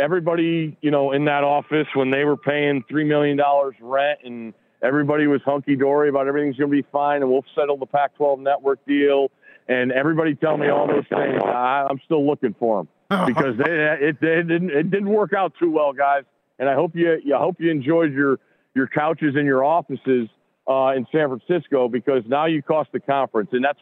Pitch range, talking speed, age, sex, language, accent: 135-165 Hz, 205 wpm, 40-59, male, English, American